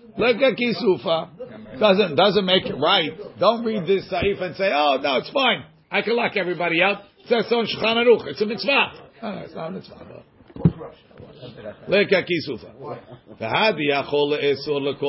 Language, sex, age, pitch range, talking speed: English, male, 50-69, 145-195 Hz, 90 wpm